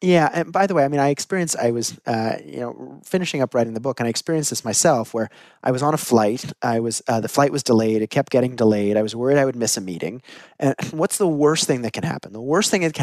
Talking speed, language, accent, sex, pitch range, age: 285 wpm, English, American, male, 115-175 Hz, 30-49